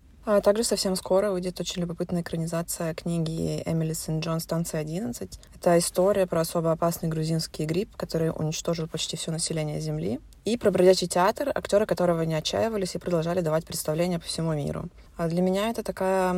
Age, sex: 20-39, female